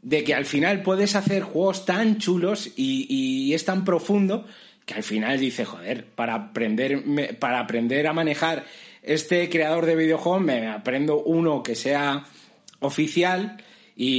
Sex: male